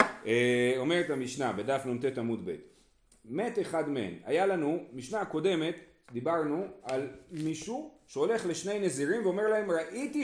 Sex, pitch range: male, 140-210 Hz